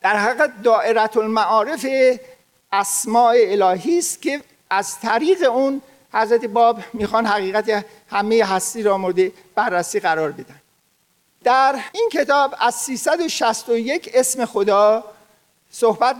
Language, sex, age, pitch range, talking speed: Persian, male, 50-69, 205-270 Hz, 110 wpm